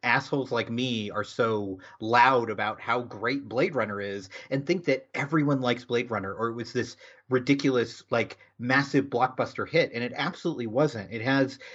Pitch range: 120-155 Hz